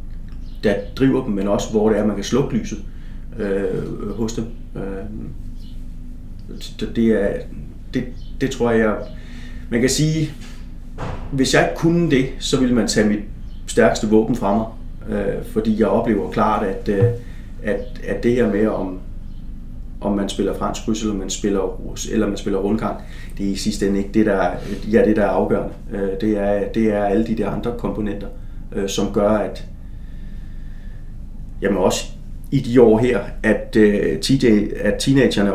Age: 30-49